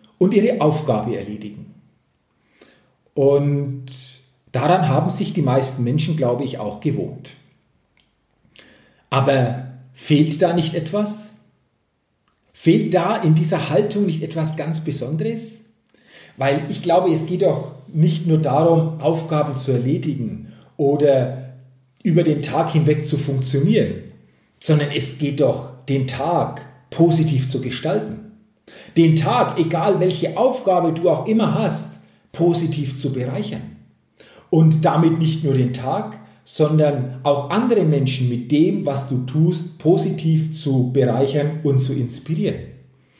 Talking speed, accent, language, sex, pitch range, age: 125 wpm, German, German, male, 135-190 Hz, 40-59